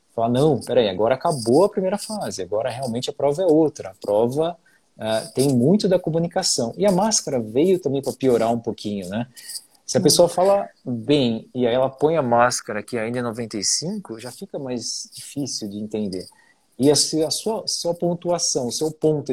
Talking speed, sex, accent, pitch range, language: 185 wpm, male, Brazilian, 120-160 Hz, Portuguese